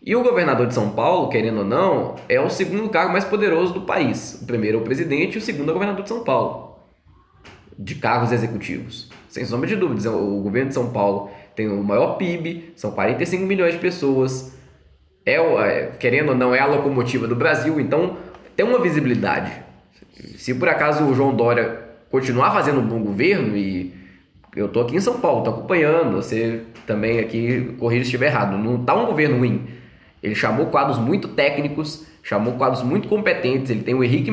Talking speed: 190 wpm